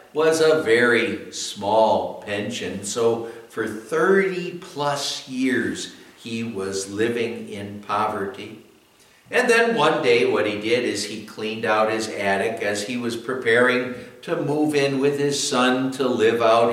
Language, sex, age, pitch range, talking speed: English, male, 60-79, 105-130 Hz, 145 wpm